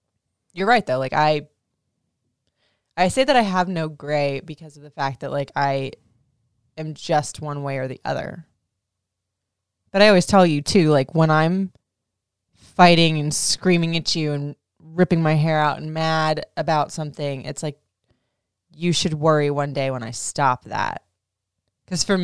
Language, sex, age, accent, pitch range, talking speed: English, female, 20-39, American, 130-160 Hz, 165 wpm